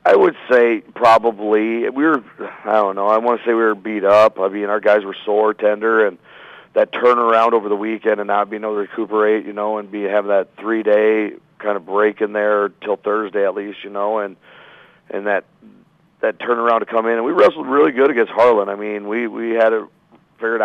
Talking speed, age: 220 wpm, 40-59